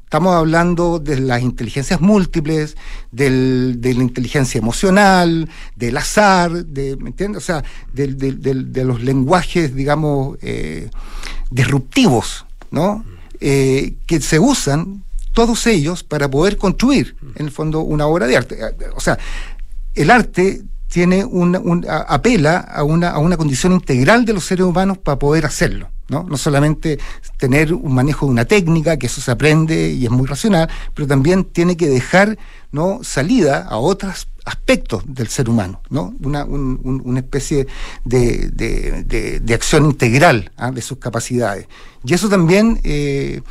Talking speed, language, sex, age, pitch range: 160 wpm, Spanish, male, 50-69, 135-180 Hz